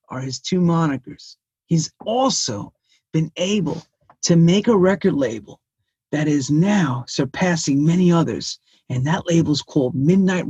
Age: 40-59